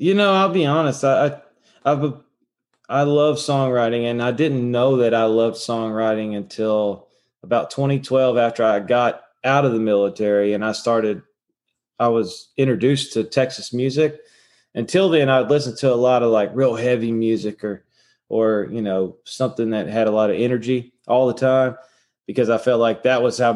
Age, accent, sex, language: 20-39, American, male, English